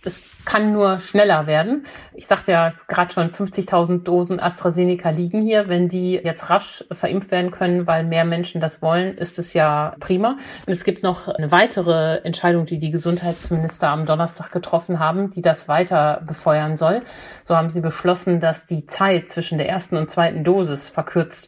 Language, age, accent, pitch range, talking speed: German, 50-69, German, 155-180 Hz, 180 wpm